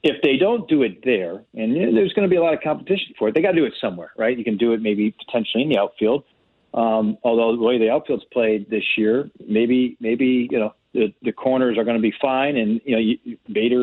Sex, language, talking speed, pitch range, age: male, English, 250 wpm, 110-125 Hz, 40-59